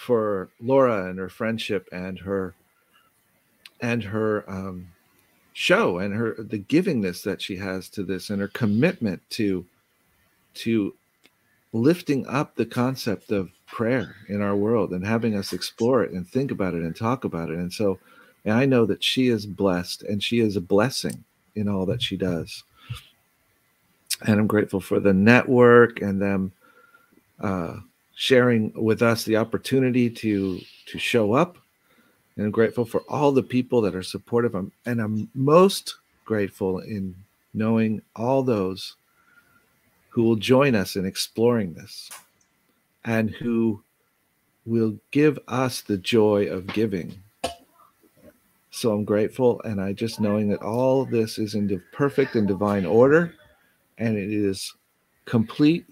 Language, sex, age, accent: English, male, 50-69, American